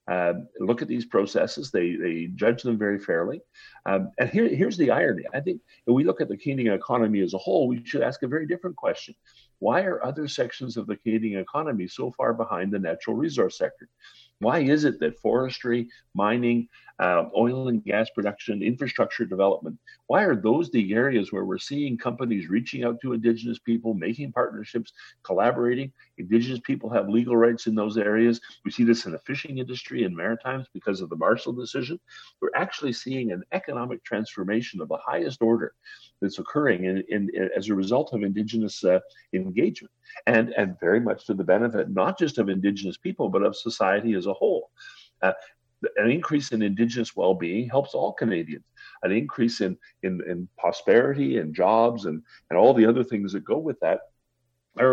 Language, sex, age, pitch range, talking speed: English, male, 50-69, 105-130 Hz, 190 wpm